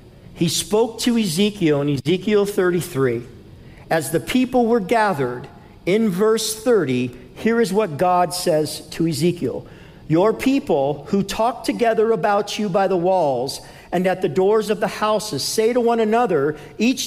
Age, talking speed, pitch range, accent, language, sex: 50-69, 155 wpm, 150-240 Hz, American, English, male